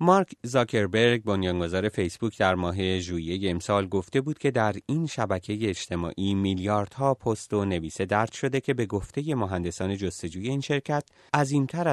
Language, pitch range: Persian, 95-135 Hz